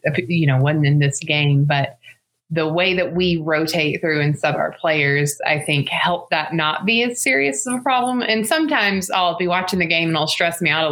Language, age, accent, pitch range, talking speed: English, 20-39, American, 145-175 Hz, 225 wpm